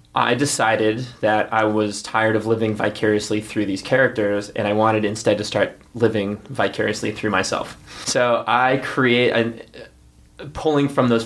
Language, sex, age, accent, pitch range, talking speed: English, male, 20-39, American, 105-120 Hz, 150 wpm